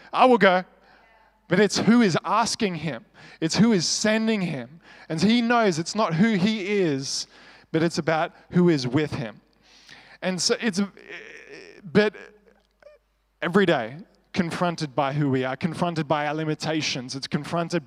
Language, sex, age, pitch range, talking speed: English, male, 20-39, 160-215 Hz, 160 wpm